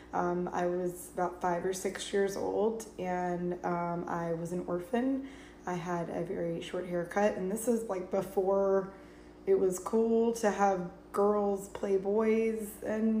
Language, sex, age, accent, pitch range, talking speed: English, female, 20-39, American, 175-205 Hz, 160 wpm